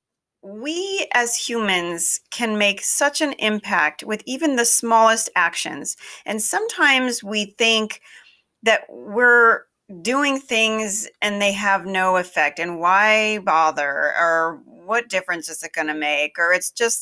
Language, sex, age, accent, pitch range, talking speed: English, female, 40-59, American, 180-245 Hz, 140 wpm